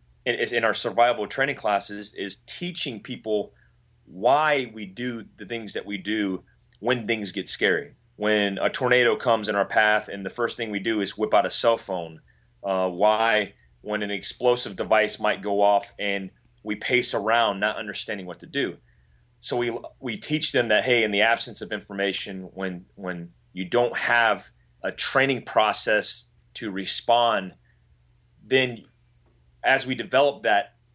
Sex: male